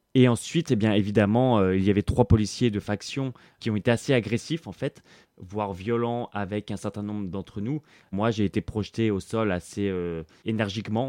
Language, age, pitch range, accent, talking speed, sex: French, 20-39, 95-115 Hz, French, 200 wpm, male